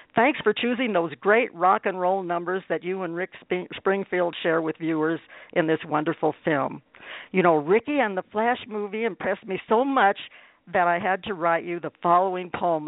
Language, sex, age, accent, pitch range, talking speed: English, female, 60-79, American, 175-235 Hz, 190 wpm